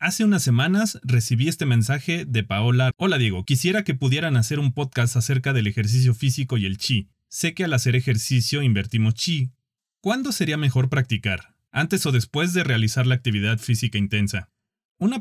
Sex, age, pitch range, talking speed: male, 30-49, 115-145 Hz, 175 wpm